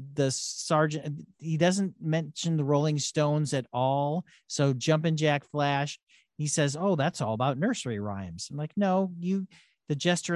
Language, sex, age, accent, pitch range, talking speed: English, male, 40-59, American, 135-170 Hz, 160 wpm